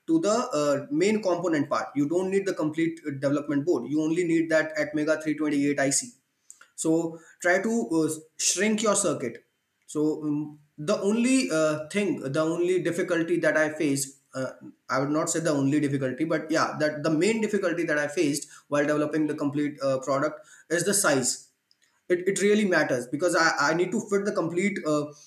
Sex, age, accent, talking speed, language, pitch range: male, 20-39, Indian, 185 wpm, English, 150-180 Hz